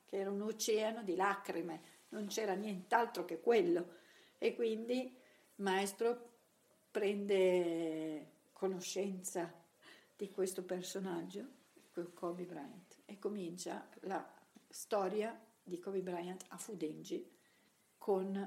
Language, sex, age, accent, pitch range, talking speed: Italian, female, 50-69, native, 185-220 Hz, 105 wpm